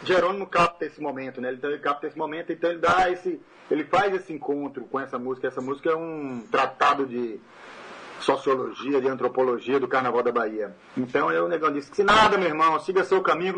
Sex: male